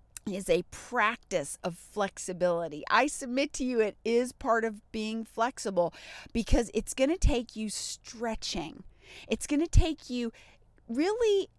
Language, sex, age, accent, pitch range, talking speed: English, female, 40-59, American, 225-295 Hz, 145 wpm